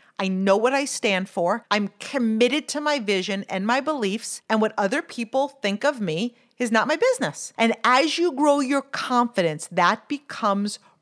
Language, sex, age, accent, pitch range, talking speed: English, female, 50-69, American, 200-260 Hz, 180 wpm